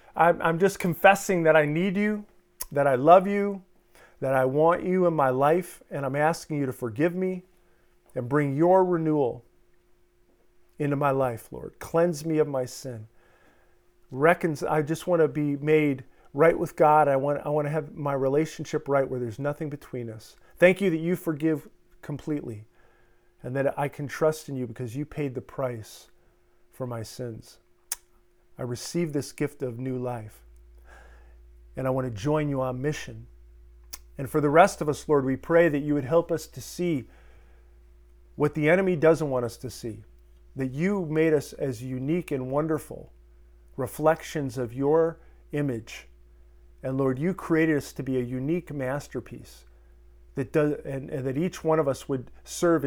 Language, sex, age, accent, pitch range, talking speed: English, male, 40-59, American, 120-160 Hz, 175 wpm